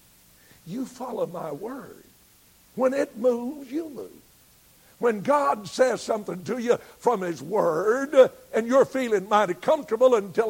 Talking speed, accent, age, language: 135 wpm, American, 60-79, English